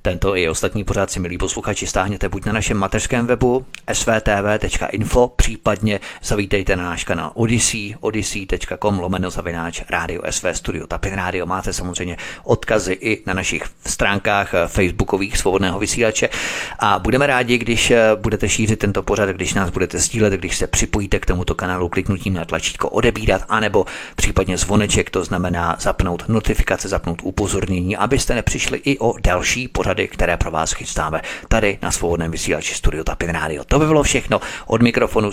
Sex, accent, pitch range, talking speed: male, native, 90-110 Hz, 155 wpm